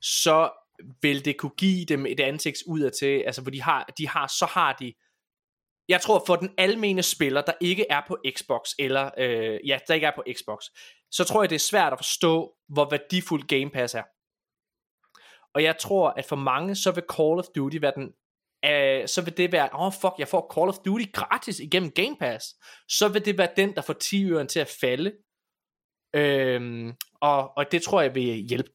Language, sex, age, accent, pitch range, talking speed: Danish, male, 20-39, native, 135-180 Hz, 210 wpm